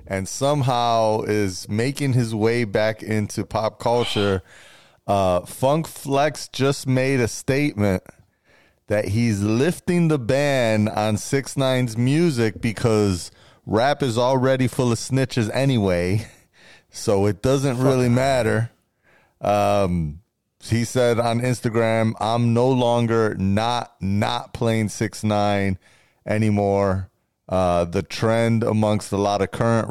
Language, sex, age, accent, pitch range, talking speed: English, male, 30-49, American, 100-120 Hz, 120 wpm